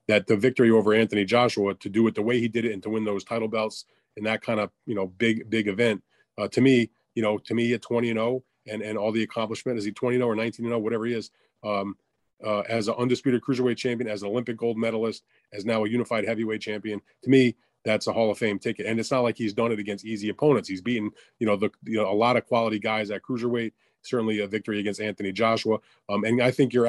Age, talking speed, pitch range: 30-49, 250 wpm, 105-125 Hz